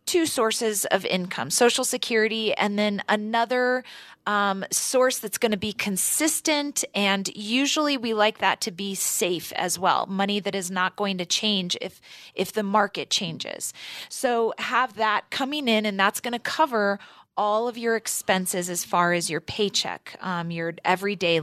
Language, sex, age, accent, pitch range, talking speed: English, female, 30-49, American, 190-235 Hz, 170 wpm